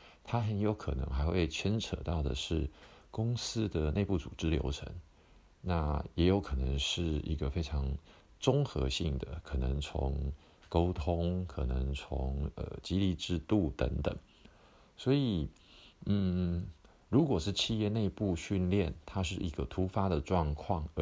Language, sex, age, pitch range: Chinese, male, 50-69, 75-95 Hz